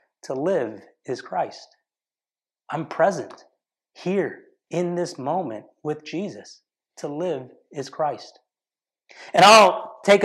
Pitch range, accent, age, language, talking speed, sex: 150-185 Hz, American, 30-49, English, 110 wpm, male